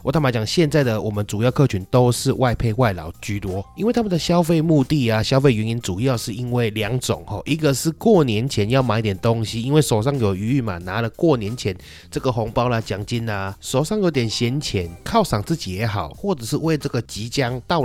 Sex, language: male, Chinese